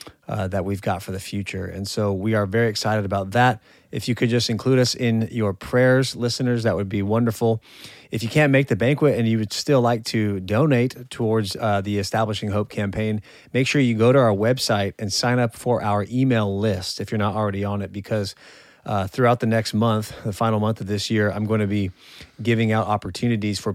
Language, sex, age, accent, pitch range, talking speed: English, male, 30-49, American, 100-115 Hz, 220 wpm